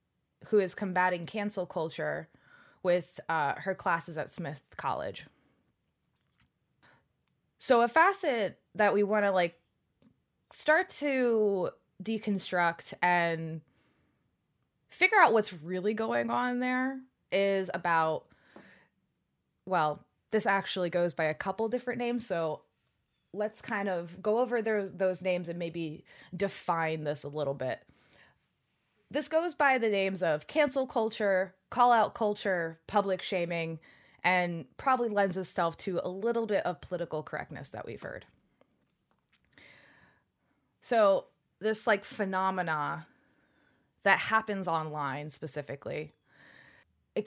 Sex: female